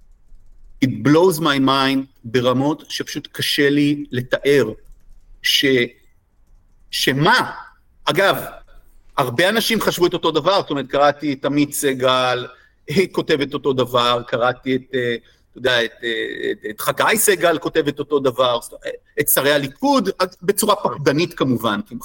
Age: 50-69